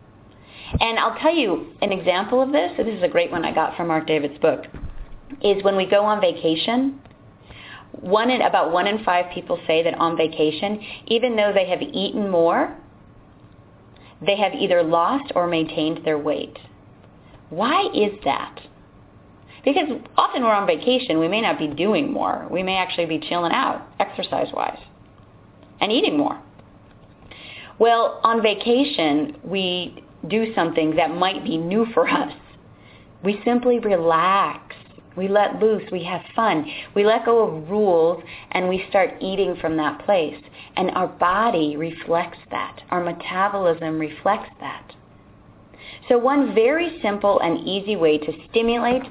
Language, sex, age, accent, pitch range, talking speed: English, female, 30-49, American, 160-220 Hz, 155 wpm